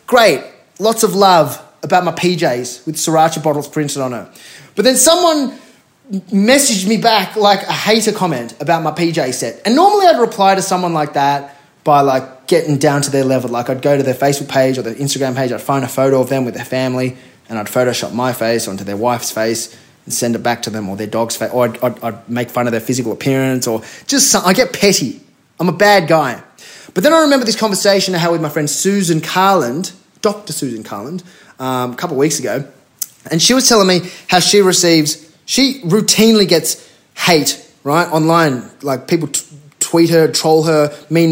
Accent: Australian